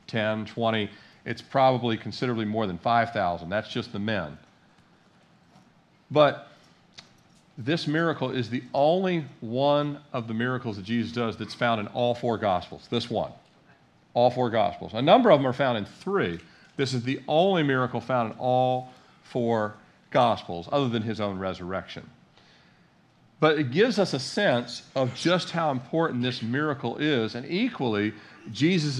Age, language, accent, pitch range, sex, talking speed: 50-69, English, American, 110-145 Hz, male, 155 wpm